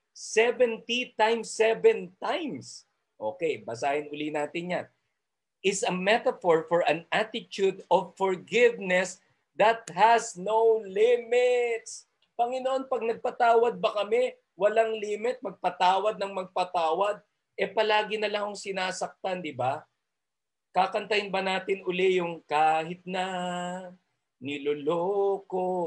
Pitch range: 170-220 Hz